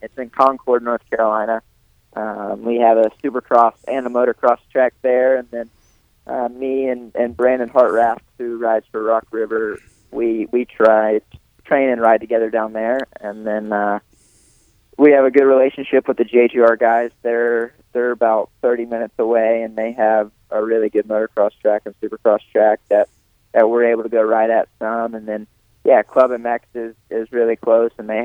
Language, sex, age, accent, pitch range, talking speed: English, male, 20-39, American, 110-120 Hz, 185 wpm